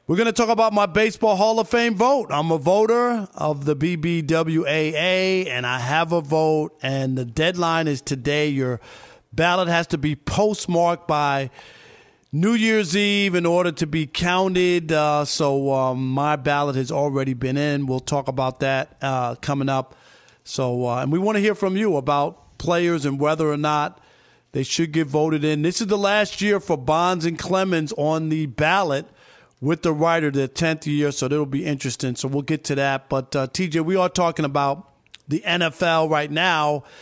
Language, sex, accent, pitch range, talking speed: English, male, American, 145-185 Hz, 190 wpm